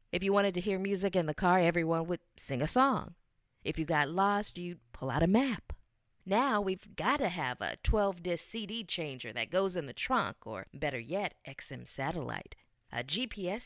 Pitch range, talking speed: 160-230 Hz, 195 wpm